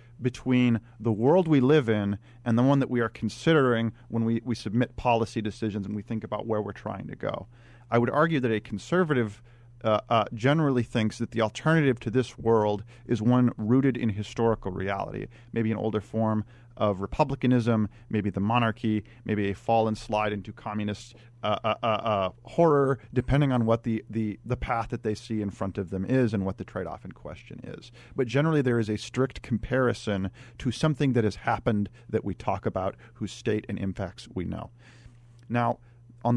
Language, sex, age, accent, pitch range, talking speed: English, male, 40-59, American, 110-125 Hz, 190 wpm